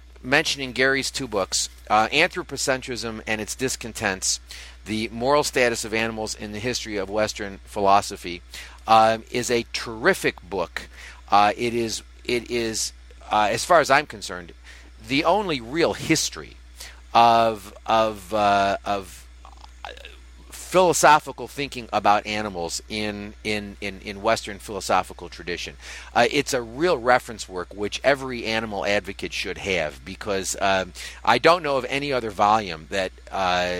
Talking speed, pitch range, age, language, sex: 140 wpm, 95-115 Hz, 40-59, English, male